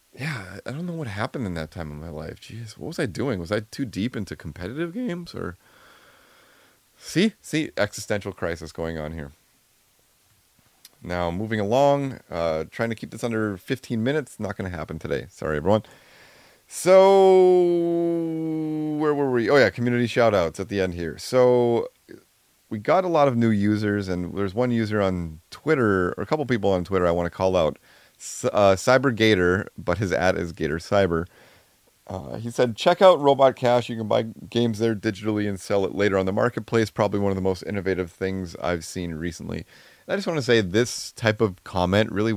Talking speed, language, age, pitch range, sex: 195 wpm, English, 30-49, 90-120 Hz, male